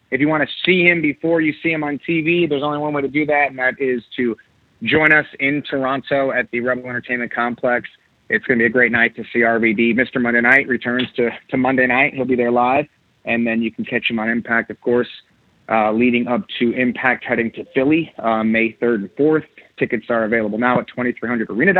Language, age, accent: English, 30-49, American